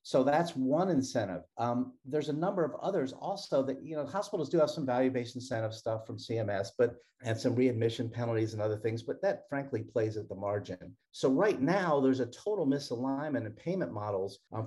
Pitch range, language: 115-140 Hz, English